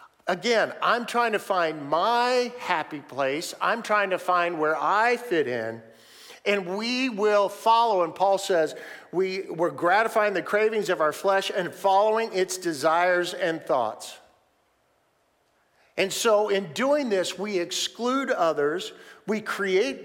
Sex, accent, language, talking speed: male, American, English, 140 wpm